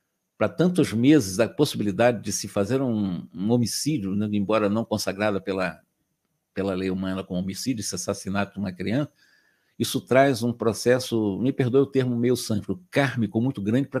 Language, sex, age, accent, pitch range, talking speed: Portuguese, male, 60-79, Brazilian, 105-140 Hz, 170 wpm